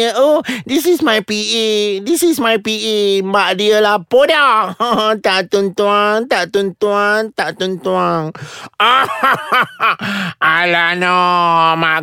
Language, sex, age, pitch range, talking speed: Malay, male, 30-49, 190-275 Hz, 130 wpm